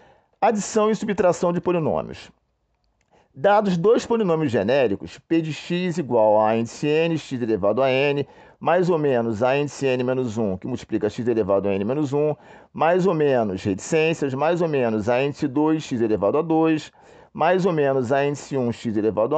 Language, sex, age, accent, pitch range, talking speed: Portuguese, male, 40-59, Brazilian, 125-190 Hz, 180 wpm